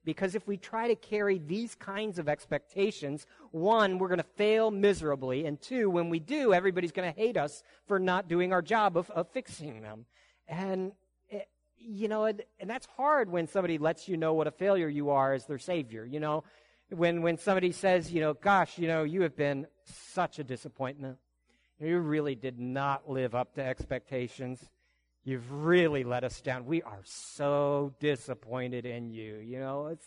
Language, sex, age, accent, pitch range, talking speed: English, male, 50-69, American, 125-185 Hz, 190 wpm